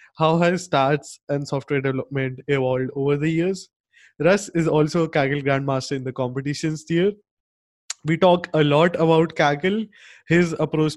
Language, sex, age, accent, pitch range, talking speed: English, male, 20-39, Indian, 130-160 Hz, 155 wpm